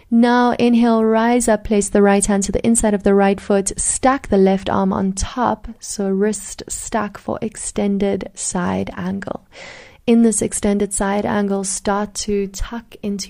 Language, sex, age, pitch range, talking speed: English, female, 30-49, 195-230 Hz, 165 wpm